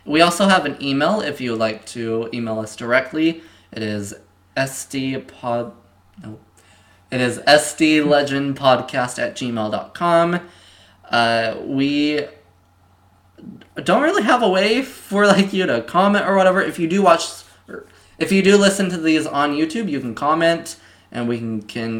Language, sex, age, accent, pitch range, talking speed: English, male, 20-39, American, 115-150 Hz, 155 wpm